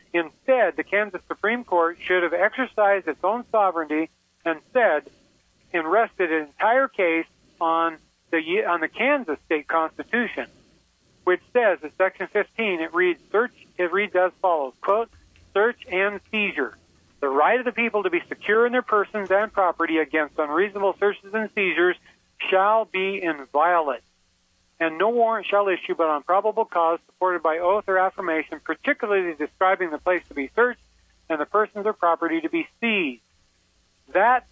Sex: male